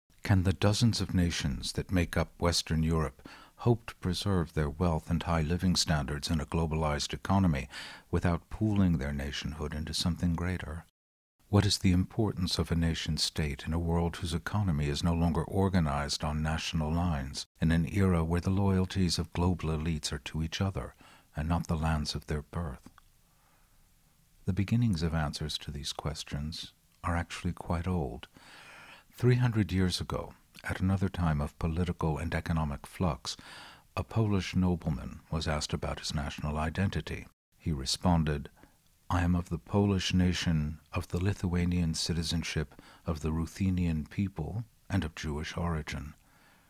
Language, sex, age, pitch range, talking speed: English, male, 60-79, 75-90 Hz, 155 wpm